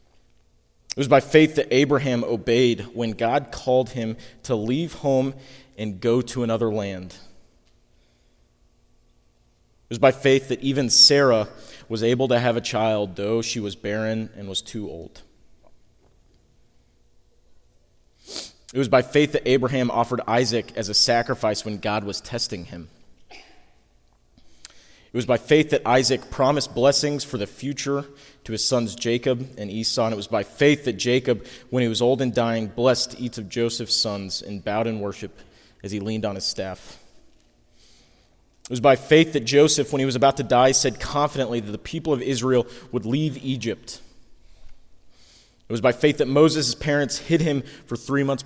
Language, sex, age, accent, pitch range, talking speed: English, male, 30-49, American, 110-135 Hz, 165 wpm